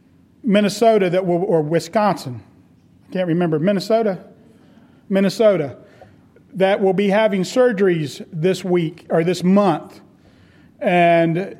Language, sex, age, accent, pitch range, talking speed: English, male, 40-59, American, 170-205 Hz, 105 wpm